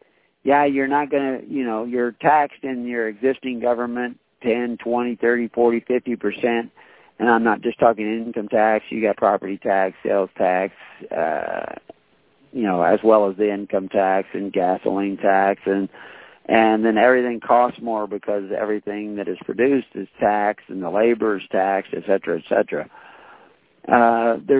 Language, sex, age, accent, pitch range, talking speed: English, male, 50-69, American, 105-135 Hz, 165 wpm